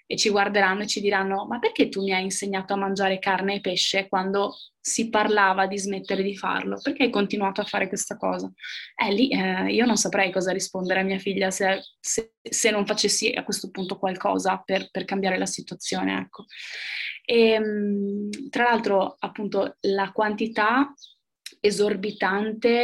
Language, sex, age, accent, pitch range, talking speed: Italian, female, 20-39, native, 190-215 Hz, 170 wpm